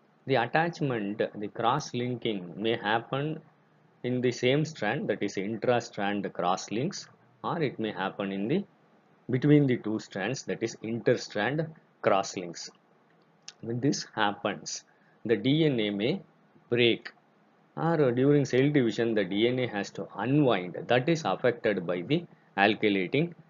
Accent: native